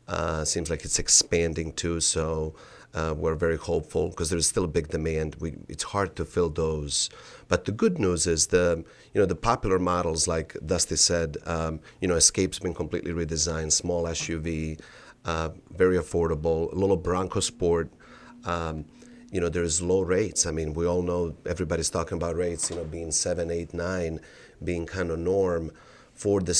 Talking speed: 180 wpm